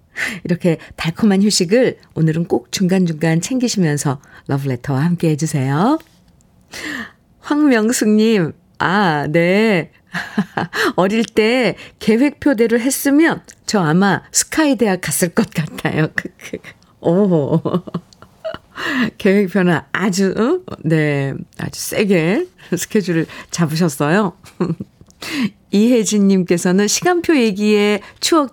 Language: Korean